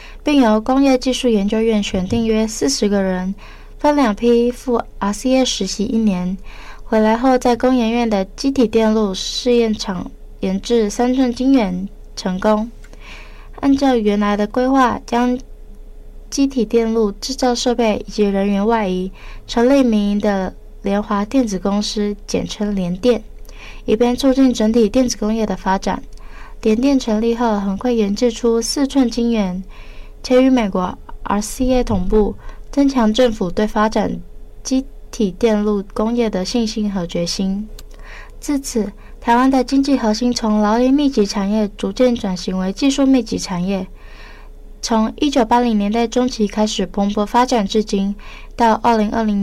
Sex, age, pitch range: female, 20-39, 205-245 Hz